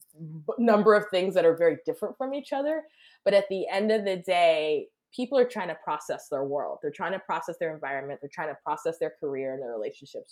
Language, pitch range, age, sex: English, 160-230 Hz, 20-39, female